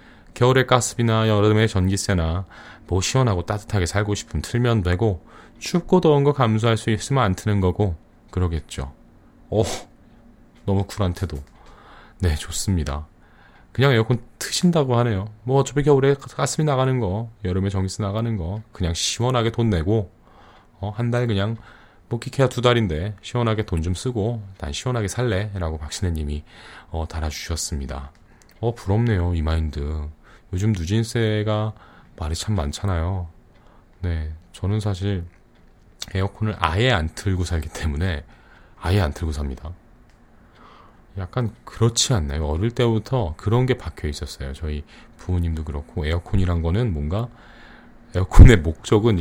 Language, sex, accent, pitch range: Korean, male, native, 85-115 Hz